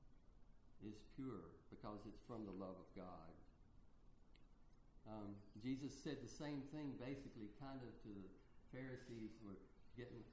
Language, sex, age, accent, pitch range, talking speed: English, male, 60-79, American, 100-130 Hz, 140 wpm